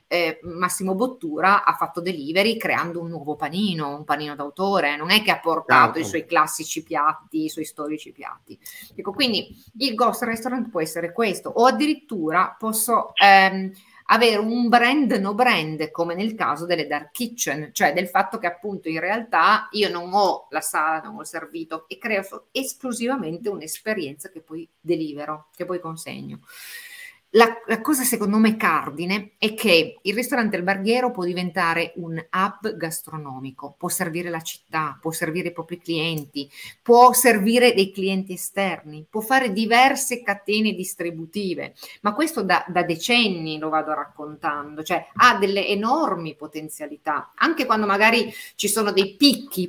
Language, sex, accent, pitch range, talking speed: Italian, female, native, 165-225 Hz, 155 wpm